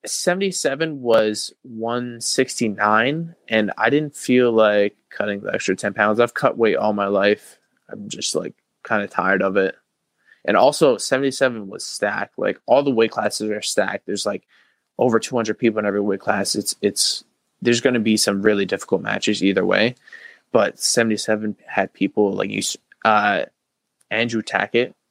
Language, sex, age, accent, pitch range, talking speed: English, male, 20-39, American, 100-115 Hz, 165 wpm